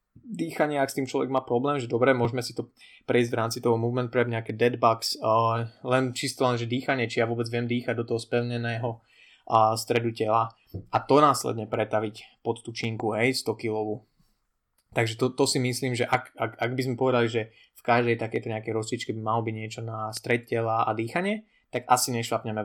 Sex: male